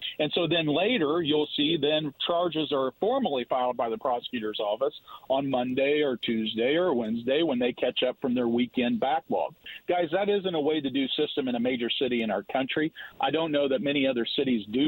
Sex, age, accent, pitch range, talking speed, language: male, 40-59, American, 125-160 Hz, 210 wpm, English